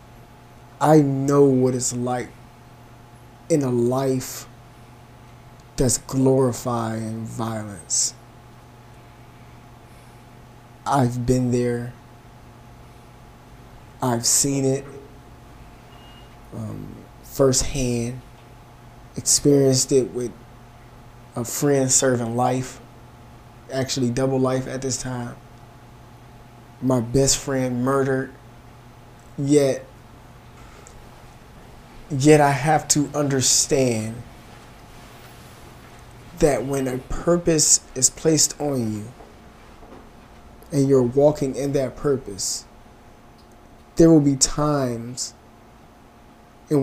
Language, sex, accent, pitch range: English, male, American, 120-130 Hz